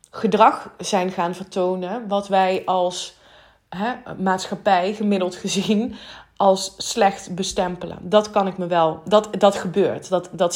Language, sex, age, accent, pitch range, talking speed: Dutch, female, 20-39, Dutch, 175-210 Hz, 130 wpm